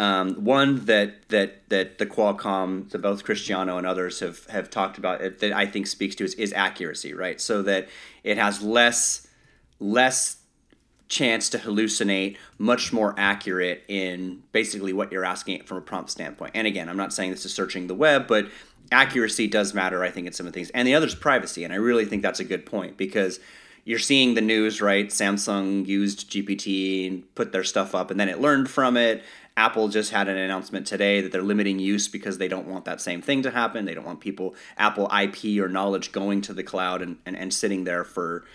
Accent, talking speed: American, 215 wpm